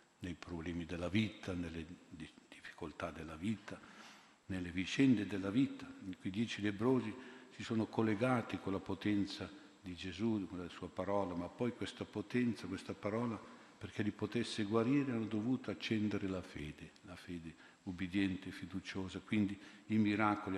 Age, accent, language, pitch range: 50-69, native, Italian, 90-105 Hz